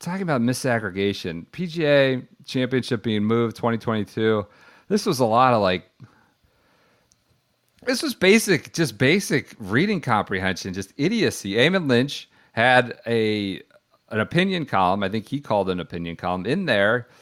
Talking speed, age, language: 135 wpm, 40-59, English